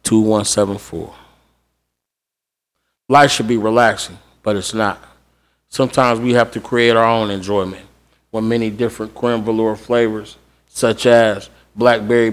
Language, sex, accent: English, male, American